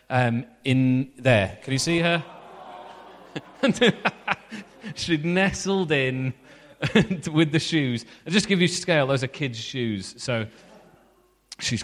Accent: British